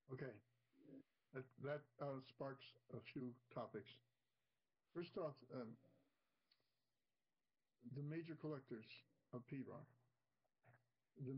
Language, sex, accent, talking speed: English, male, American, 90 wpm